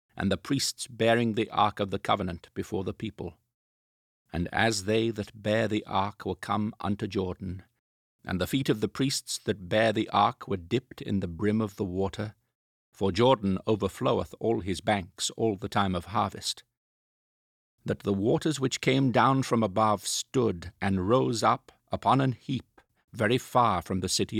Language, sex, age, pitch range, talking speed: English, male, 50-69, 95-115 Hz, 175 wpm